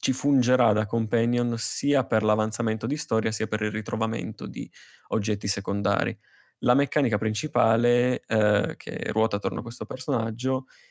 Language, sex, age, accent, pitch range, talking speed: Italian, male, 20-39, native, 105-120 Hz, 145 wpm